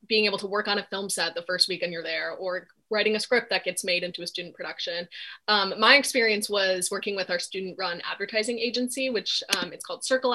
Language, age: English, 20-39